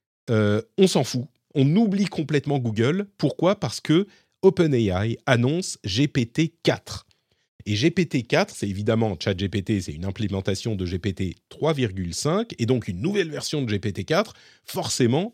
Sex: male